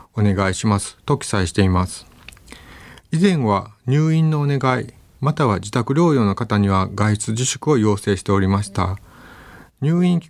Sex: male